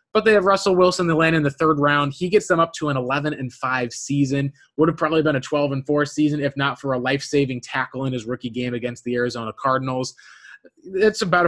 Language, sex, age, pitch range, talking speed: English, male, 20-39, 130-155 Hz, 220 wpm